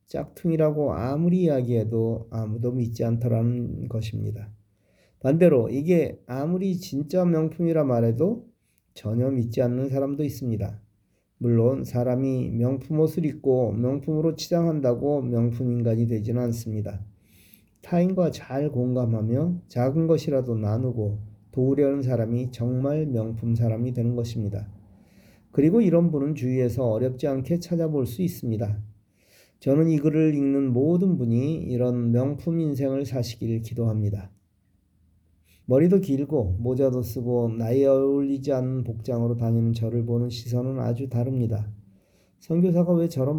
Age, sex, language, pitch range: 40-59, male, Korean, 115-145 Hz